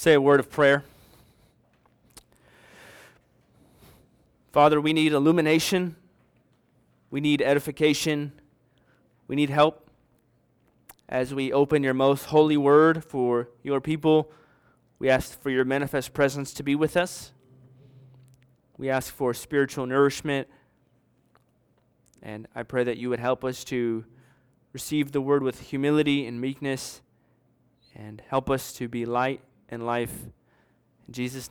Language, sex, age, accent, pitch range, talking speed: English, male, 20-39, American, 130-165 Hz, 125 wpm